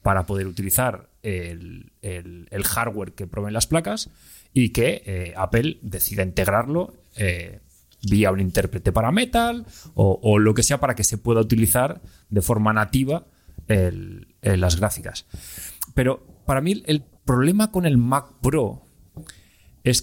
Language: Spanish